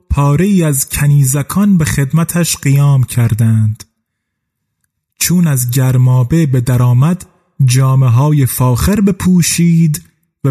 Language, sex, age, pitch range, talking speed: Persian, male, 30-49, 130-175 Hz, 90 wpm